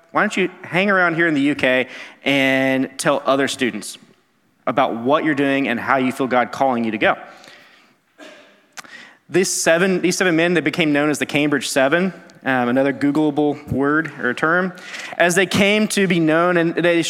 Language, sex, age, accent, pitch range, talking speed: English, male, 30-49, American, 140-185 Hz, 185 wpm